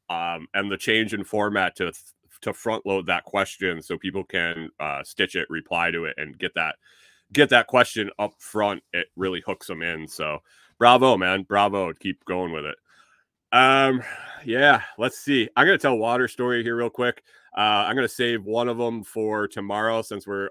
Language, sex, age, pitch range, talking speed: English, male, 30-49, 95-110 Hz, 190 wpm